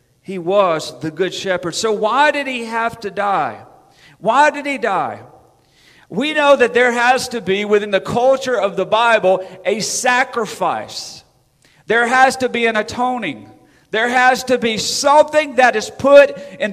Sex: male